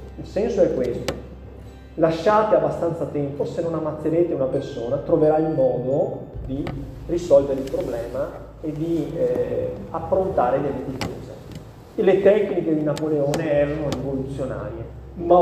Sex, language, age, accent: male, Italian, 30-49, native